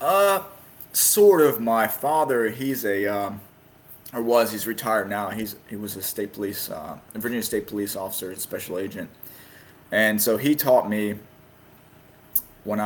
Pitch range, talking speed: 105-115 Hz, 160 wpm